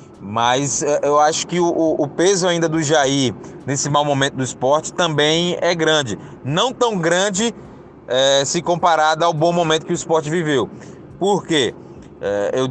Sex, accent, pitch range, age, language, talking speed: male, Brazilian, 135-170 Hz, 20-39, Portuguese, 155 wpm